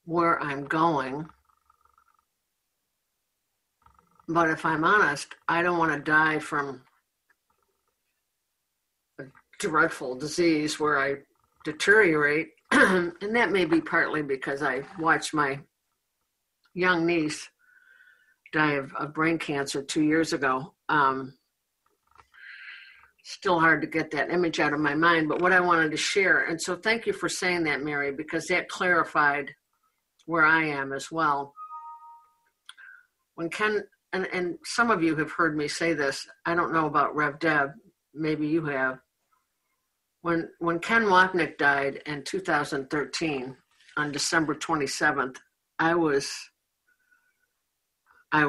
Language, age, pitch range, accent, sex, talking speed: English, 60-79, 150-185 Hz, American, female, 130 wpm